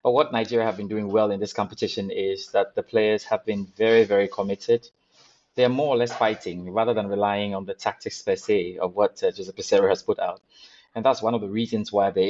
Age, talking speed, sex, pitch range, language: 30-49, 240 wpm, male, 100-140 Hz, English